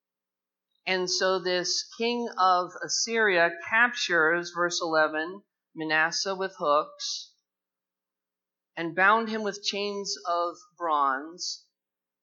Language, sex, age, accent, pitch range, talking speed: English, male, 50-69, American, 130-175 Hz, 95 wpm